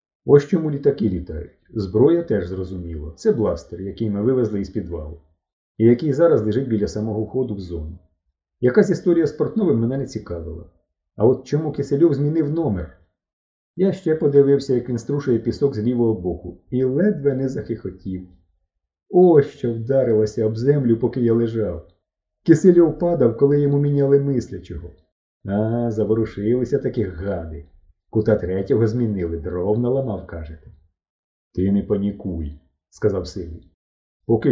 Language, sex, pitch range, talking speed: Ukrainian, male, 85-125 Hz, 140 wpm